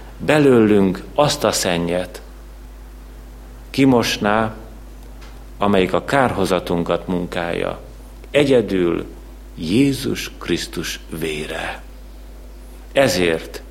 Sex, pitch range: male, 90-125 Hz